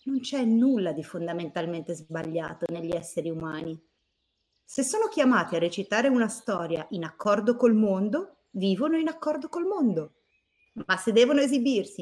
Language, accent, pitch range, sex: Italian, native, 170-245 Hz, female